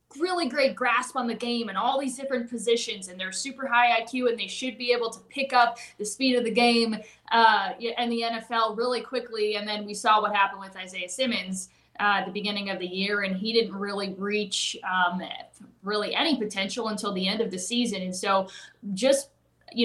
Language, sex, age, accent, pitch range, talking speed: English, female, 20-39, American, 200-240 Hz, 210 wpm